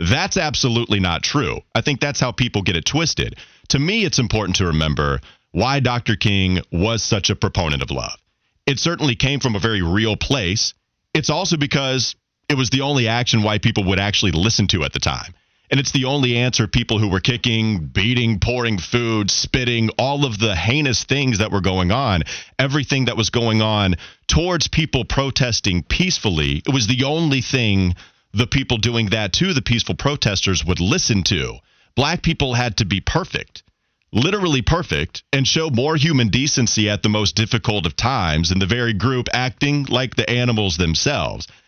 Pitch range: 100-135 Hz